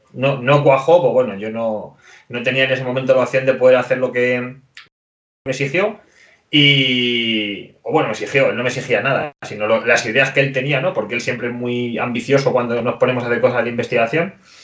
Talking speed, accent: 215 wpm, Spanish